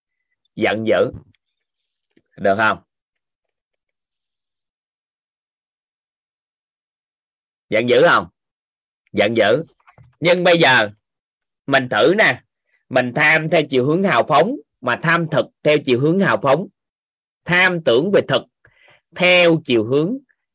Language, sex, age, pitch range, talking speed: Vietnamese, male, 20-39, 125-180 Hz, 110 wpm